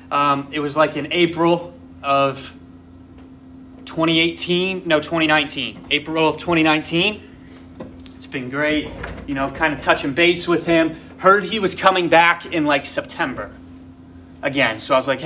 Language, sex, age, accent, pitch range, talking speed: English, male, 30-49, American, 140-165 Hz, 145 wpm